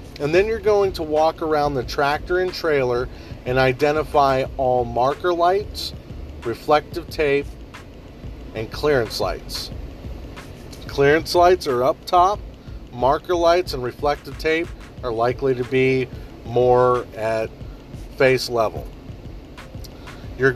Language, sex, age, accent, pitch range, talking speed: English, male, 40-59, American, 120-155 Hz, 115 wpm